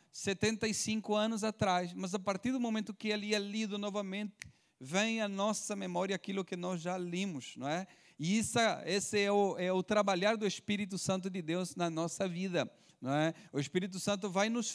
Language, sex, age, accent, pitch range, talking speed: Portuguese, male, 40-59, Brazilian, 185-235 Hz, 185 wpm